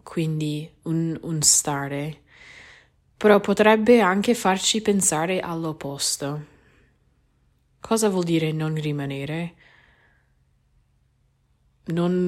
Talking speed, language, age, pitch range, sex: 80 wpm, Italian, 20-39, 150-190 Hz, female